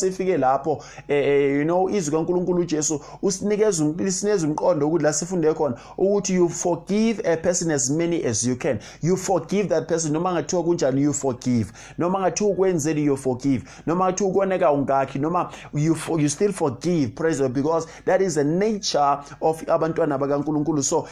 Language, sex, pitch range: English, male, 145-185 Hz